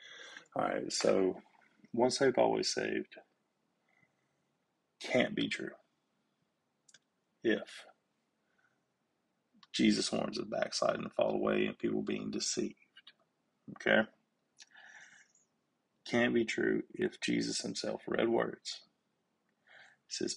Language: English